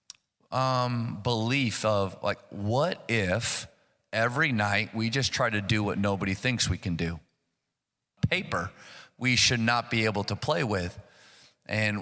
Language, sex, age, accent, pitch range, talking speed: English, male, 30-49, American, 105-130 Hz, 145 wpm